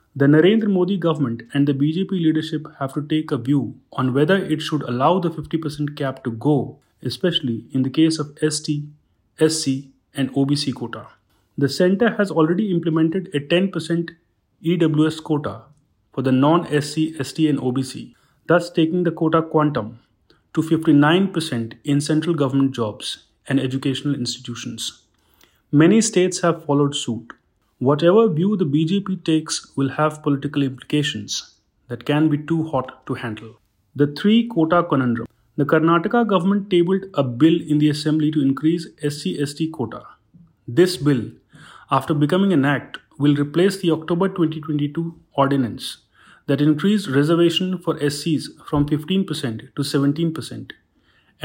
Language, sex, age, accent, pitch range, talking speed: English, male, 30-49, Indian, 135-165 Hz, 140 wpm